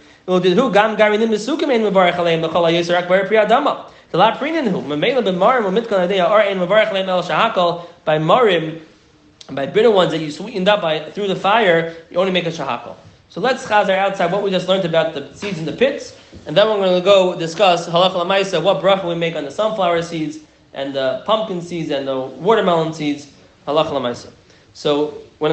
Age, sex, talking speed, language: 30-49, male, 150 wpm, English